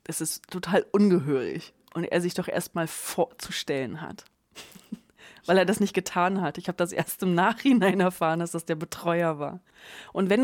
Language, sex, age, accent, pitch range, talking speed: German, female, 20-39, German, 170-195 Hz, 185 wpm